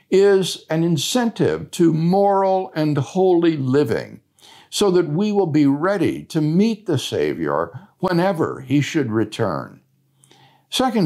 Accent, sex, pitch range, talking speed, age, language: American, male, 135-195 Hz, 125 wpm, 60-79, English